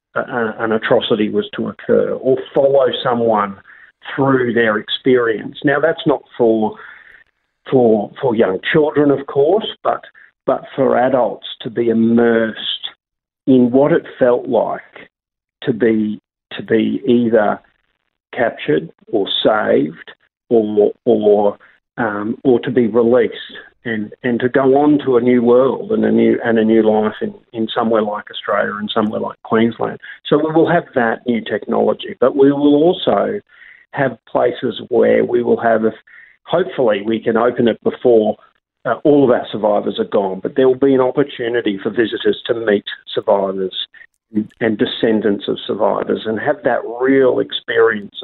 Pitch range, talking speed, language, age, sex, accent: 110-140 Hz, 155 wpm, English, 50-69, male, Australian